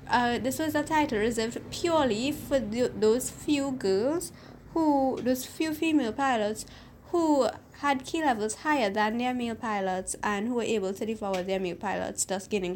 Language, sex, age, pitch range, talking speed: English, female, 20-39, 215-275 Hz, 175 wpm